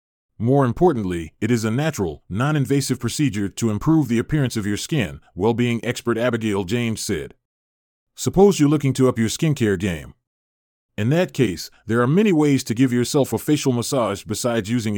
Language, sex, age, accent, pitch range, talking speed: English, male, 30-49, American, 100-140 Hz, 170 wpm